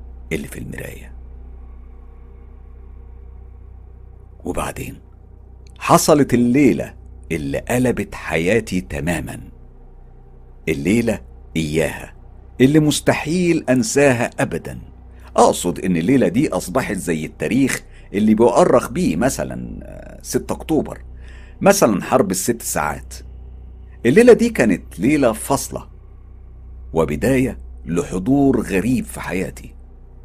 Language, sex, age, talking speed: Arabic, male, 60-79, 85 wpm